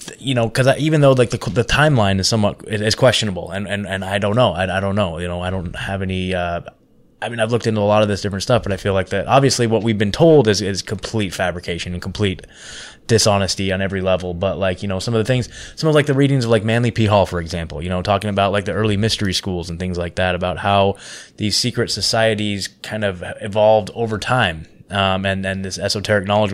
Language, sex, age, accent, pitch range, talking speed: English, male, 20-39, American, 95-120 Hz, 255 wpm